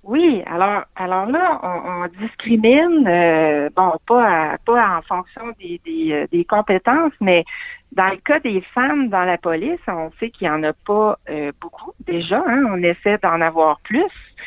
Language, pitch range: French, 170-235 Hz